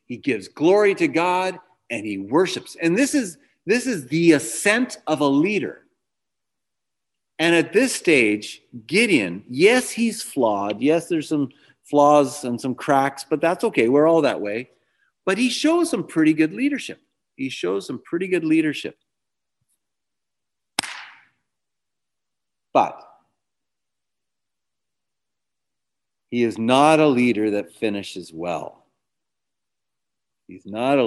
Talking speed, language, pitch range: 125 wpm, English, 110-180 Hz